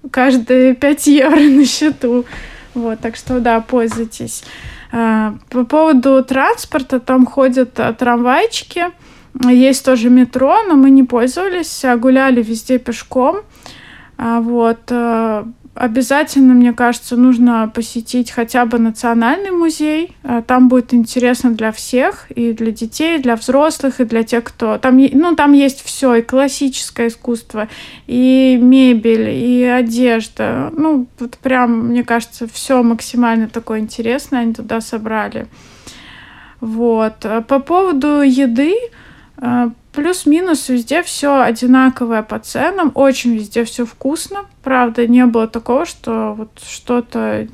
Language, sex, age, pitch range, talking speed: Russian, female, 20-39, 230-270 Hz, 120 wpm